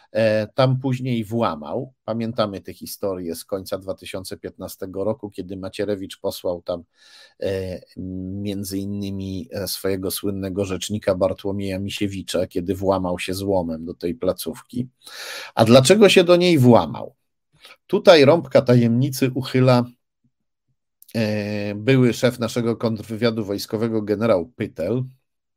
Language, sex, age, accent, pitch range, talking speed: Polish, male, 50-69, native, 100-125 Hz, 105 wpm